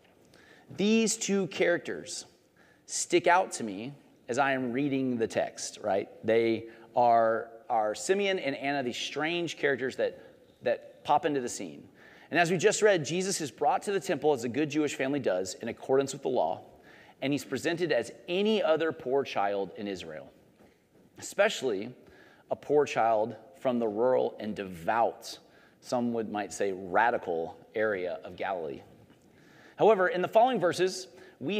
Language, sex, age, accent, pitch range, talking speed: English, male, 30-49, American, 120-180 Hz, 160 wpm